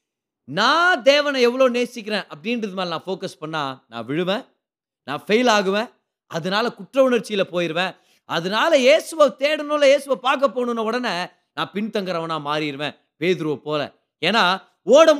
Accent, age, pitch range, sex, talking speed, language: native, 30-49, 175-255 Hz, male, 125 wpm, Tamil